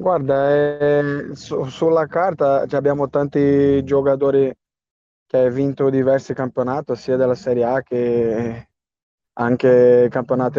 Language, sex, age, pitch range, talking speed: Italian, male, 20-39, 125-140 Hz, 115 wpm